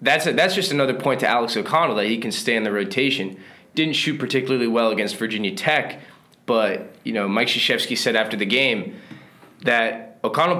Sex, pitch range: male, 105-130 Hz